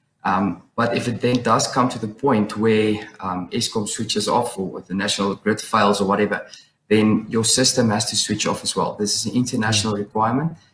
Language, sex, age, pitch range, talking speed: English, male, 20-39, 105-115 Hz, 205 wpm